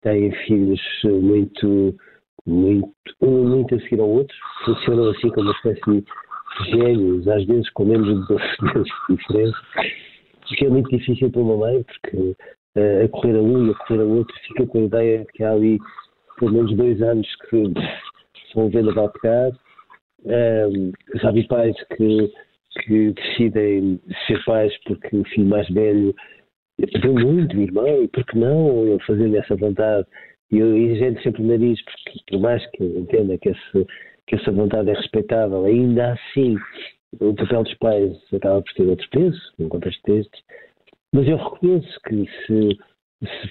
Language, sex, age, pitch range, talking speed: Portuguese, male, 50-69, 105-120 Hz, 170 wpm